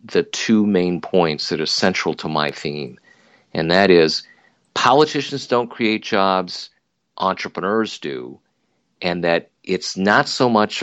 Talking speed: 140 wpm